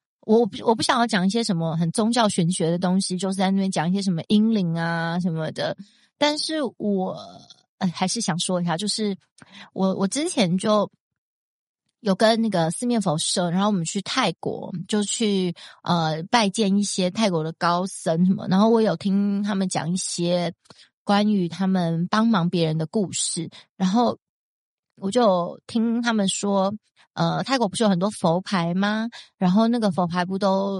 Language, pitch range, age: Chinese, 175-215 Hz, 30-49